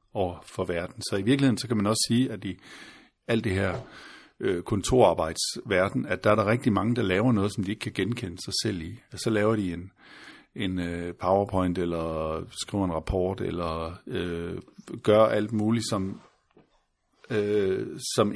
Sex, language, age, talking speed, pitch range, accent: male, Danish, 50-69, 165 wpm, 95-120 Hz, native